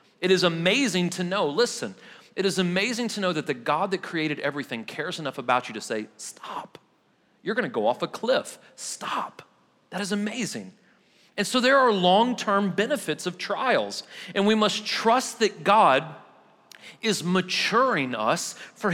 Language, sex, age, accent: English, male, 40-59, American